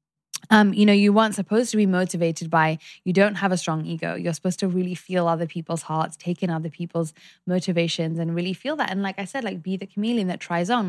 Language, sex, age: English, female, 10-29